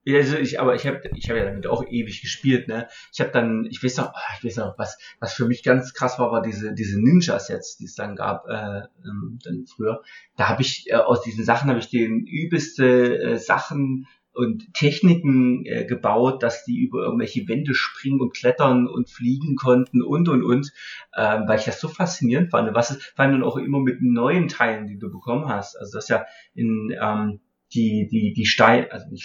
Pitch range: 110-130 Hz